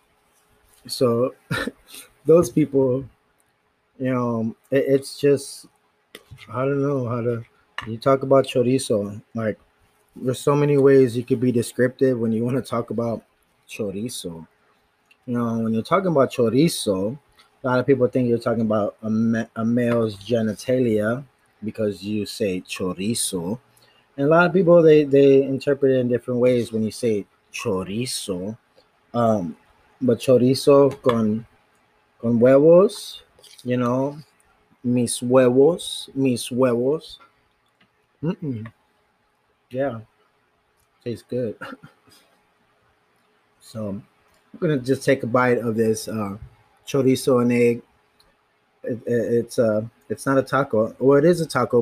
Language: English